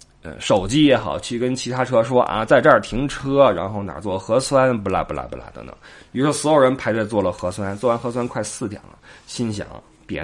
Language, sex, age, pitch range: Chinese, male, 20-39, 105-170 Hz